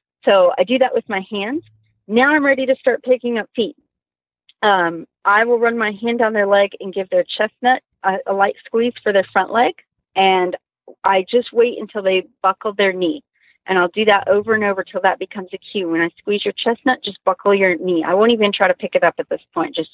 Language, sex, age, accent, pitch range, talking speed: English, female, 30-49, American, 185-245 Hz, 235 wpm